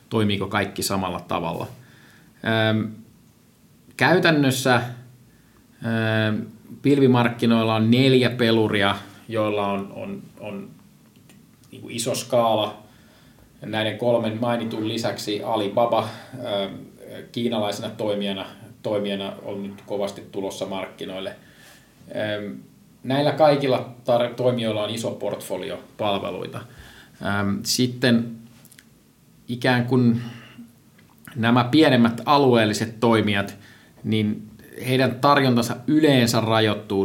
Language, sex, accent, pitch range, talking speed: Finnish, male, native, 100-120 Hz, 75 wpm